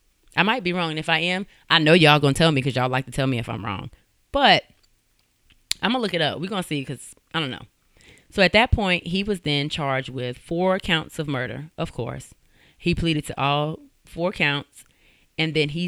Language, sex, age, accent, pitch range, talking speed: English, female, 30-49, American, 130-170 Hz, 240 wpm